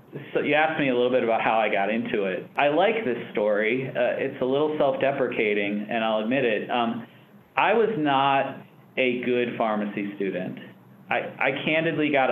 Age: 40-59